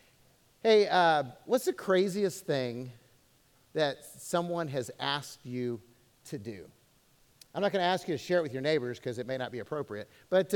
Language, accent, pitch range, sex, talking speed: English, American, 145-200 Hz, male, 180 wpm